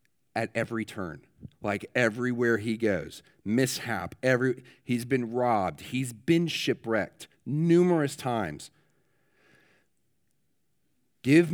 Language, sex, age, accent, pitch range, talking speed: English, male, 40-59, American, 110-135 Hz, 95 wpm